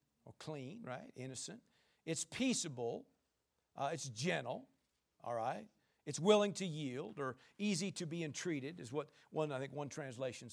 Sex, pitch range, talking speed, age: male, 155-220 Hz, 150 wpm, 50-69